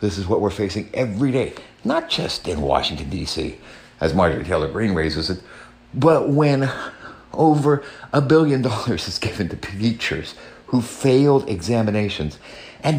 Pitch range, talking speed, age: 85-130 Hz, 150 wpm, 60-79